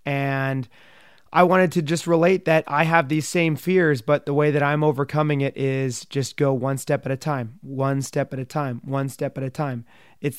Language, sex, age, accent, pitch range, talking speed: English, male, 30-49, American, 135-160 Hz, 220 wpm